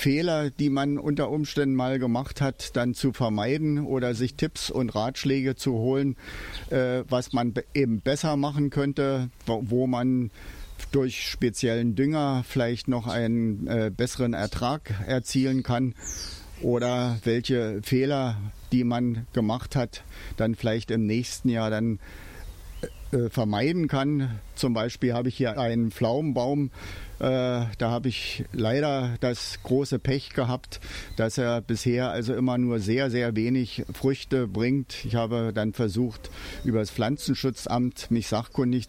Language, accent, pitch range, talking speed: German, German, 110-130 Hz, 135 wpm